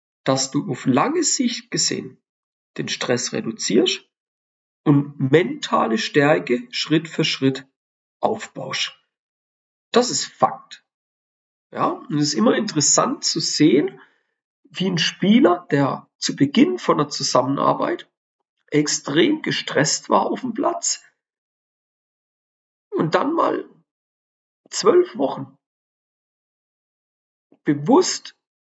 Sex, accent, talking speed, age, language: male, German, 100 wpm, 50-69, German